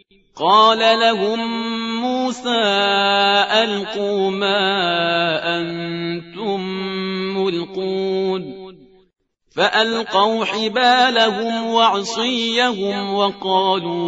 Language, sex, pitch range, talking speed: Persian, male, 190-230 Hz, 50 wpm